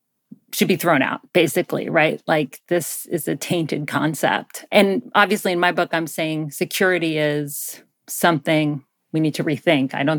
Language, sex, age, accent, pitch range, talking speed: English, female, 30-49, American, 165-205 Hz, 165 wpm